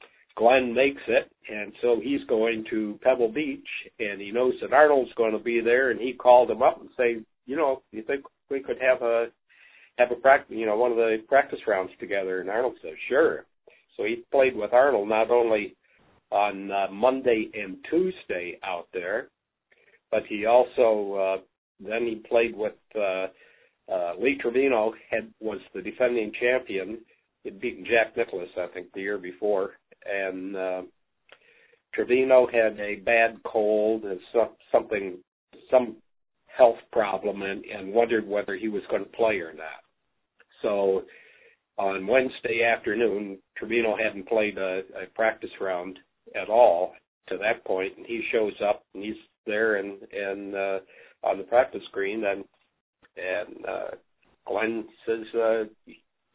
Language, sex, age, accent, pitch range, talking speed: English, male, 60-79, American, 100-130 Hz, 160 wpm